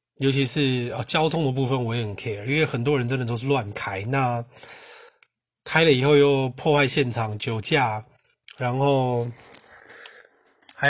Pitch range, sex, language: 120-140 Hz, male, Chinese